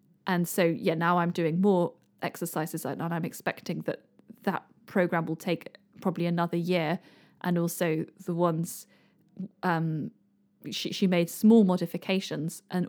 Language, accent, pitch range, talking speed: English, British, 170-195 Hz, 140 wpm